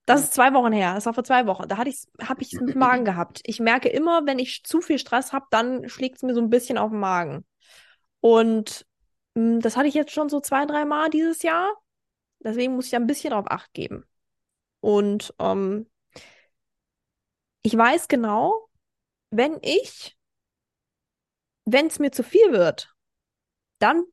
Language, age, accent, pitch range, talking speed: German, 20-39, German, 230-310 Hz, 180 wpm